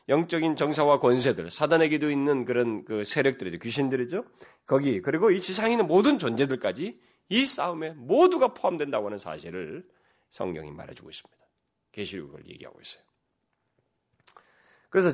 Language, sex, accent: Korean, male, native